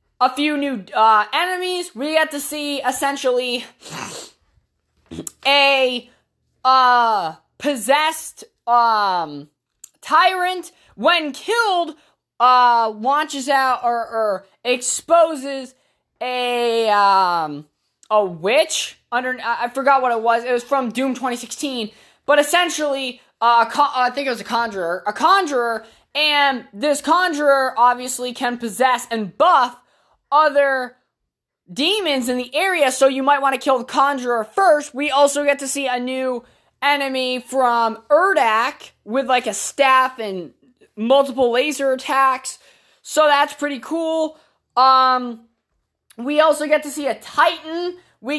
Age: 20-39